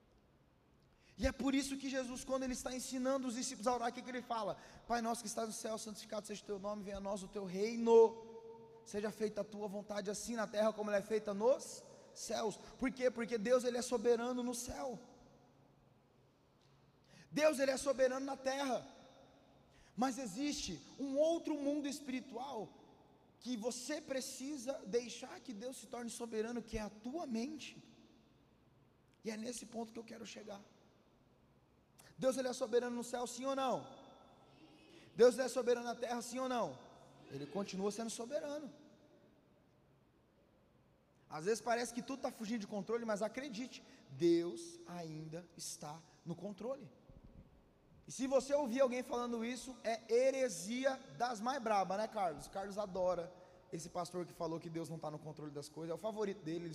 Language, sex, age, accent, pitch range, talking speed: Portuguese, male, 20-39, Brazilian, 200-255 Hz, 170 wpm